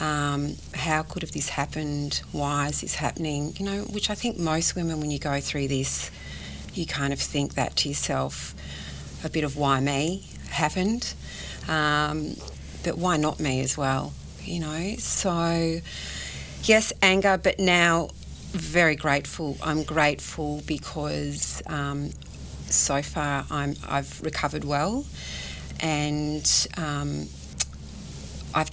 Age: 40-59